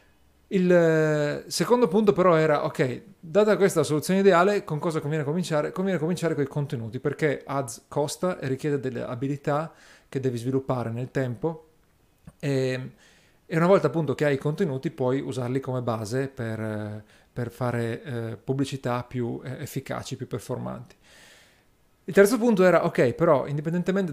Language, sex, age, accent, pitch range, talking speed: Italian, male, 40-59, native, 130-160 Hz, 145 wpm